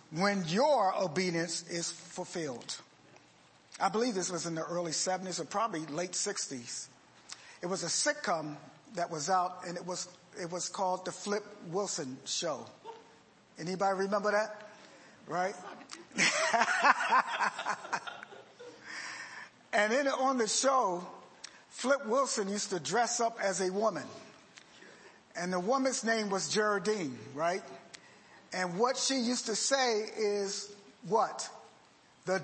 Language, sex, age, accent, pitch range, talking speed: English, male, 50-69, American, 180-225 Hz, 125 wpm